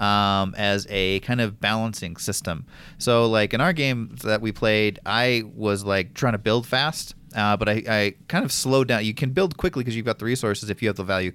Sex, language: male, English